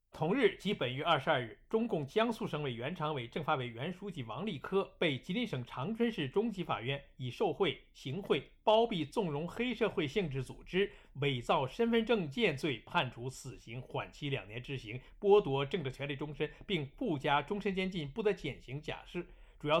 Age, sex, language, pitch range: 50-69, male, Chinese, 135-200 Hz